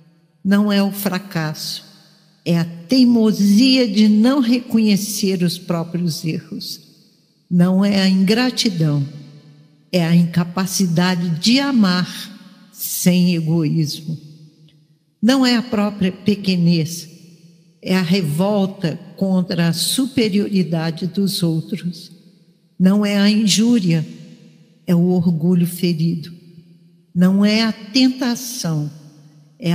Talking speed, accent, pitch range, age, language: 100 wpm, Brazilian, 170-205 Hz, 60-79, Portuguese